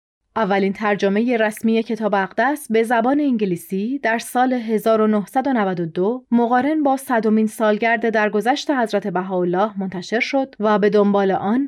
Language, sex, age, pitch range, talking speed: Persian, female, 30-49, 205-250 Hz, 125 wpm